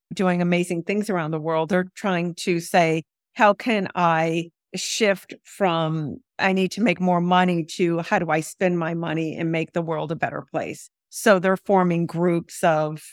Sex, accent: female, American